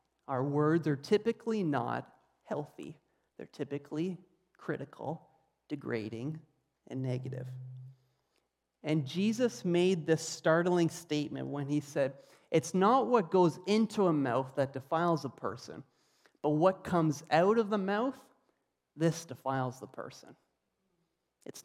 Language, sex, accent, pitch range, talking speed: English, male, American, 140-185 Hz, 120 wpm